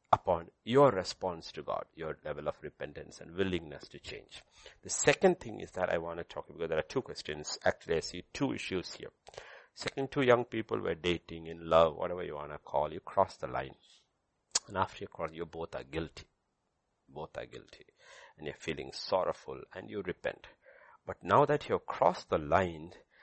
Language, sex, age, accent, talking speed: English, male, 60-79, Indian, 195 wpm